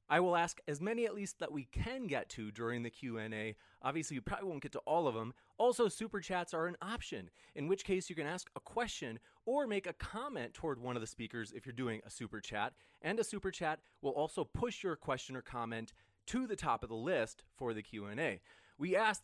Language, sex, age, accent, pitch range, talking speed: English, male, 30-49, American, 120-195 Hz, 235 wpm